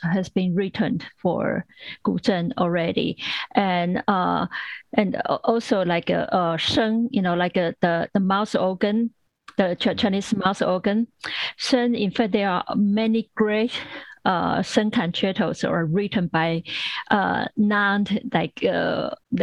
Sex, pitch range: female, 180-220 Hz